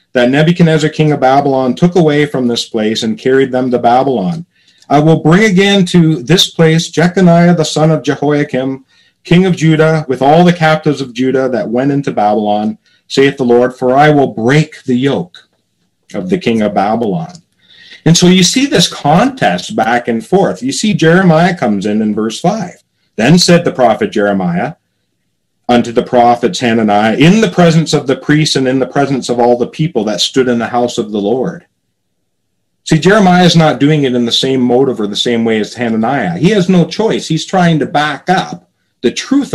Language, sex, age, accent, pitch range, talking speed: English, male, 50-69, American, 120-170 Hz, 195 wpm